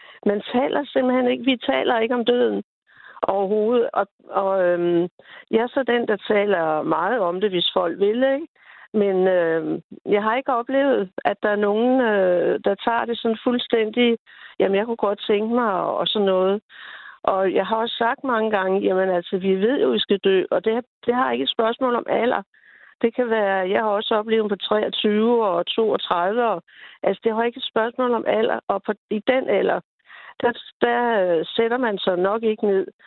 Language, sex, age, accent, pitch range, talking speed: Danish, female, 60-79, native, 195-240 Hz, 200 wpm